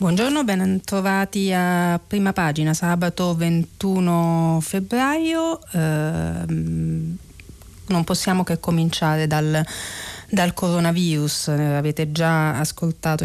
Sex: female